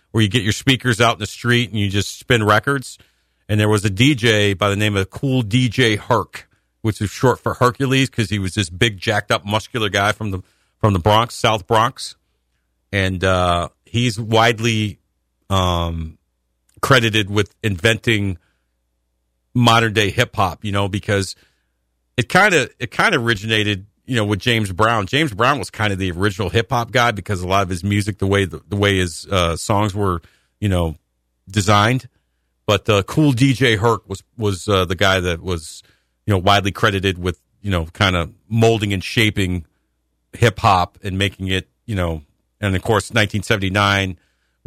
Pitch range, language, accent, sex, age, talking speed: 90-110 Hz, English, American, male, 50-69, 185 wpm